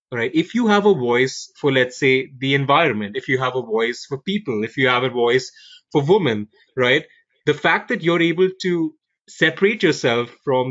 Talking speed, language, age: 195 wpm, English, 20-39